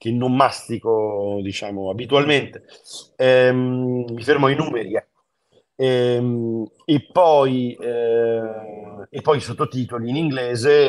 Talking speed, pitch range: 100 wpm, 105-130 Hz